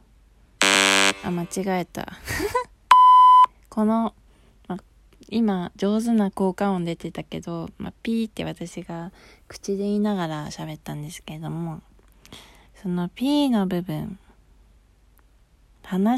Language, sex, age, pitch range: Japanese, female, 20-39, 170-230 Hz